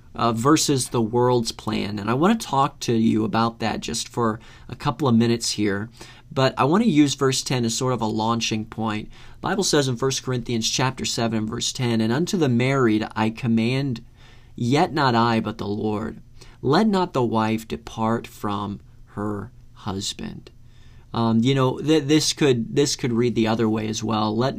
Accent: American